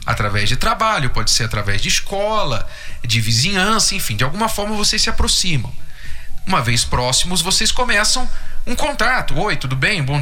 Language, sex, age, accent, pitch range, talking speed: Portuguese, male, 40-59, Brazilian, 115-195 Hz, 165 wpm